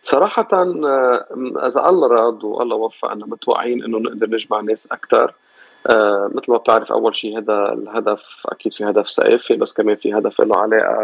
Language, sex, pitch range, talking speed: Arabic, male, 105-120 Hz, 160 wpm